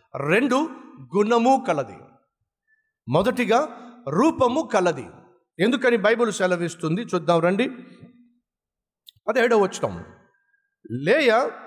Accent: native